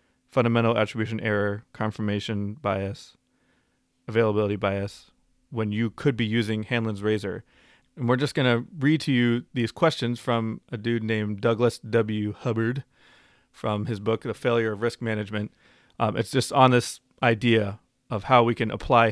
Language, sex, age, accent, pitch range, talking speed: English, male, 30-49, American, 105-125 Hz, 155 wpm